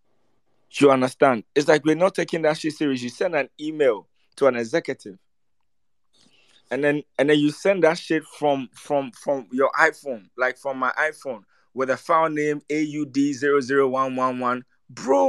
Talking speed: 155 wpm